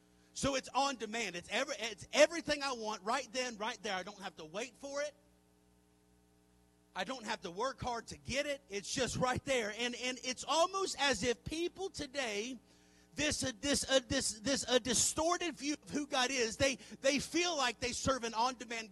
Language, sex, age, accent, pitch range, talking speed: English, male, 40-59, American, 205-275 Hz, 200 wpm